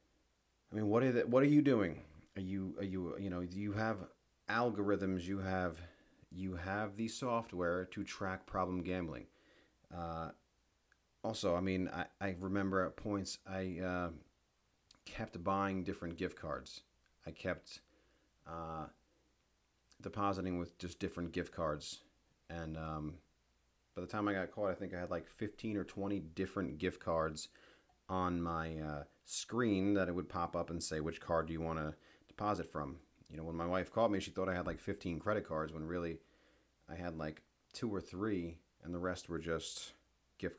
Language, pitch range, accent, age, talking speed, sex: English, 80-100 Hz, American, 30-49, 175 wpm, male